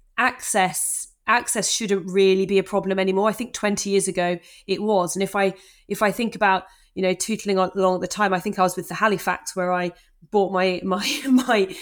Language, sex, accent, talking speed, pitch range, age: English, female, British, 215 wpm, 185-210 Hz, 30-49